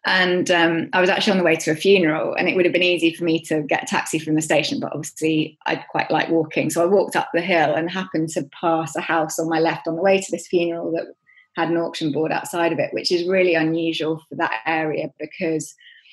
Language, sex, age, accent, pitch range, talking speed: English, female, 20-39, British, 160-185 Hz, 260 wpm